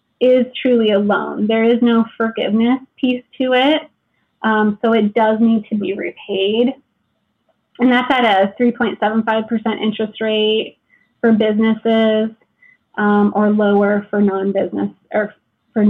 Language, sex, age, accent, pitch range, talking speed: English, female, 20-39, American, 210-240 Hz, 130 wpm